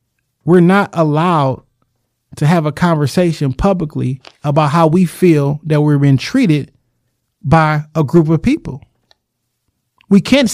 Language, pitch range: English, 150-215 Hz